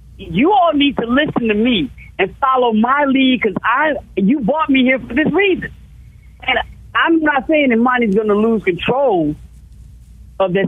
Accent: American